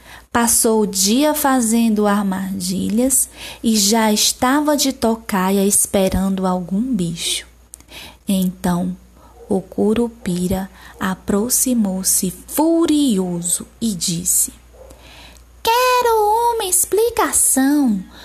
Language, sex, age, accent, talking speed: Portuguese, female, 20-39, Brazilian, 75 wpm